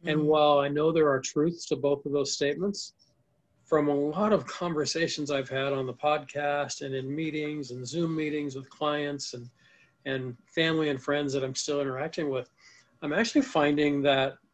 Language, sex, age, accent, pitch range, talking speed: English, male, 50-69, American, 130-150 Hz, 180 wpm